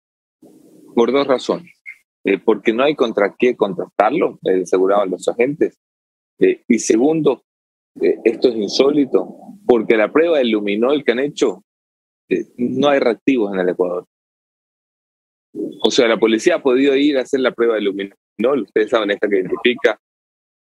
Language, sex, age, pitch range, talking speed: English, male, 30-49, 95-140 Hz, 155 wpm